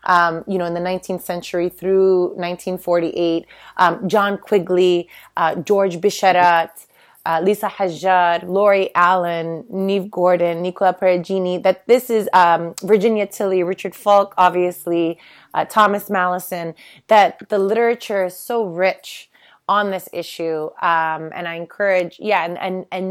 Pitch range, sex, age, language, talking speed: 175-215 Hz, female, 30-49, English, 140 wpm